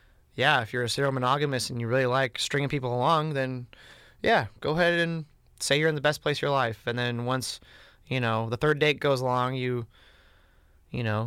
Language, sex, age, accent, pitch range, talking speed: English, male, 20-39, American, 110-145 Hz, 215 wpm